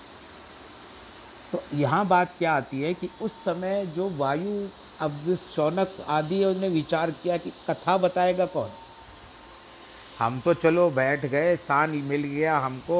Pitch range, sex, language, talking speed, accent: 135-165 Hz, male, Hindi, 140 wpm, native